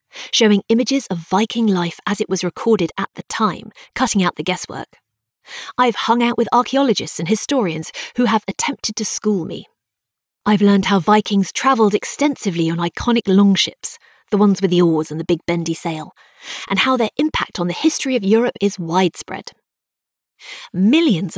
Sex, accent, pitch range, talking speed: female, British, 175-230 Hz, 170 wpm